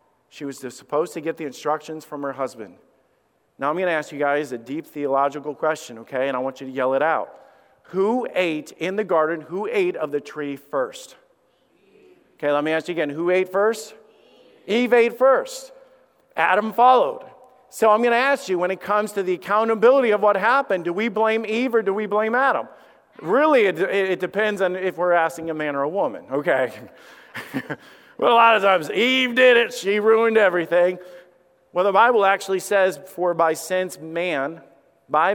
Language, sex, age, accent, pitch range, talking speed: English, male, 50-69, American, 145-210 Hz, 195 wpm